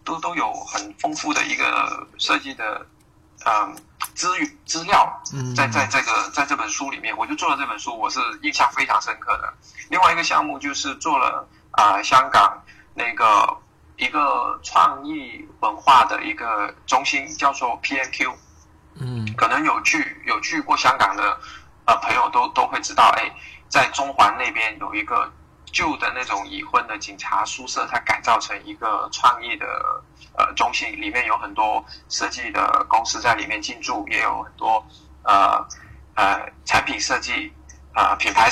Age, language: 20-39, Chinese